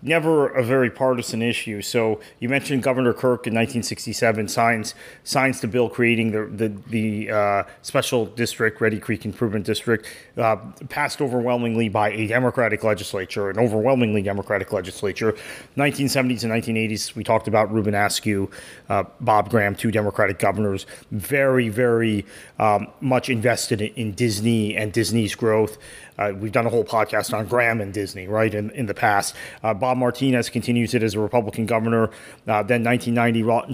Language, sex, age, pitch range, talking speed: English, male, 30-49, 110-135 Hz, 155 wpm